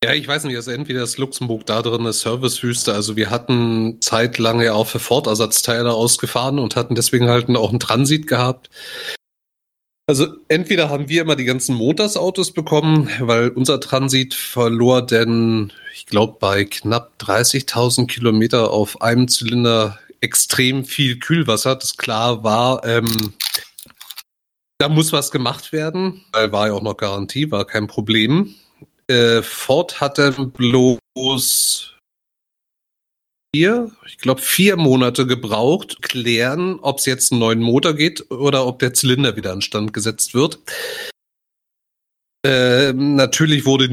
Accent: German